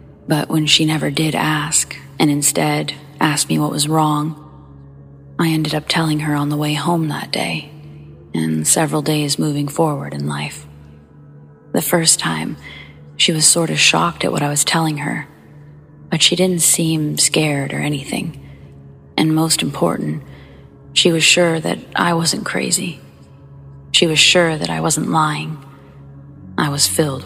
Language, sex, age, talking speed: English, female, 30-49, 160 wpm